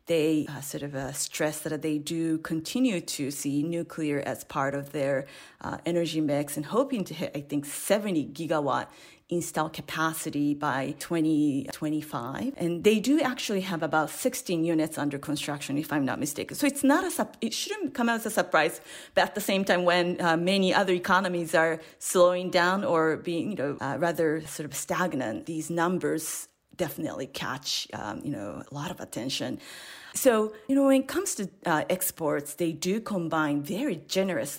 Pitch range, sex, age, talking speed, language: 155-190 Hz, female, 30-49, 180 wpm, English